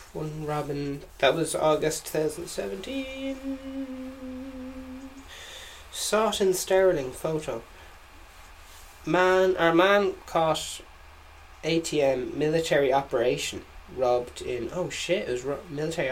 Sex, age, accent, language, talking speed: male, 20-39, Irish, English, 95 wpm